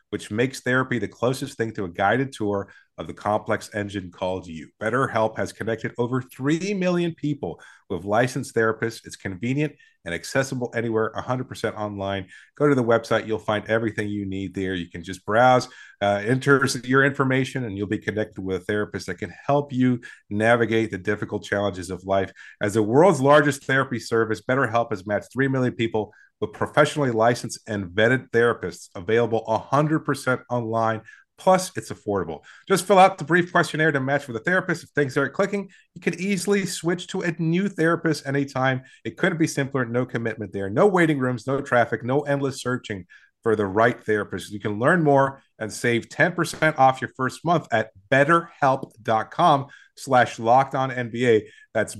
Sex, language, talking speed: male, English, 175 wpm